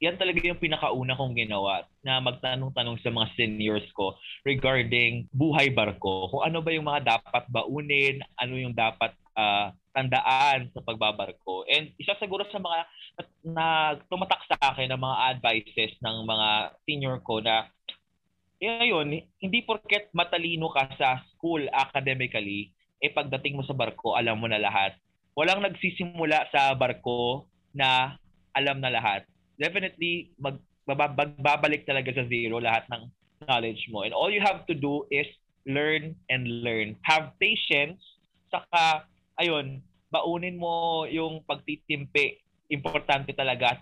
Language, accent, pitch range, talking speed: Filipino, native, 125-165 Hz, 135 wpm